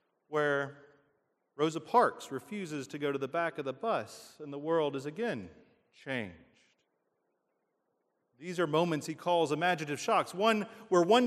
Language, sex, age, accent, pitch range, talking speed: English, male, 40-59, American, 145-200 Hz, 150 wpm